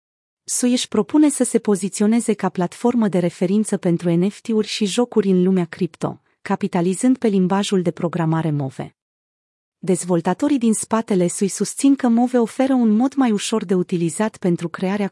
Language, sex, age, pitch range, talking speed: Romanian, female, 30-49, 175-225 Hz, 155 wpm